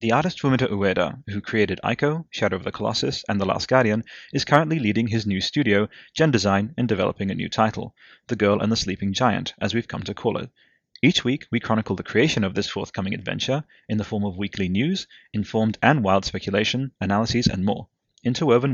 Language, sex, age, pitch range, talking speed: English, male, 30-49, 100-125 Hz, 205 wpm